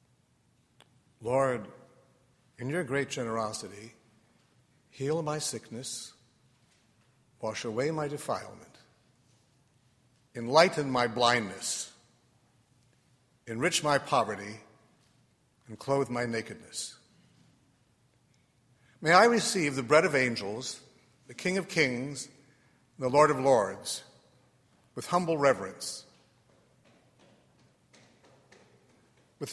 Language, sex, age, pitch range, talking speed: English, male, 60-79, 120-145 Hz, 85 wpm